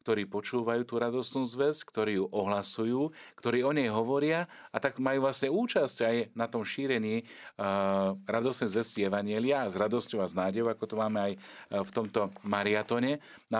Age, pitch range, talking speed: 40-59, 100-135 Hz, 170 wpm